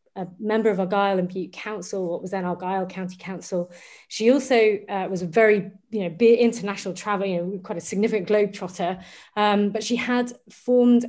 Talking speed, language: 155 wpm, English